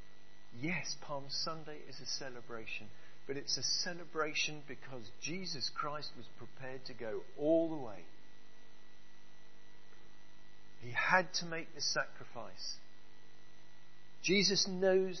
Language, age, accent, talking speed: English, 50-69, British, 110 wpm